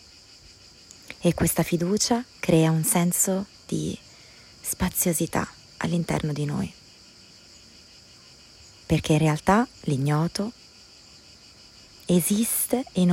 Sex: female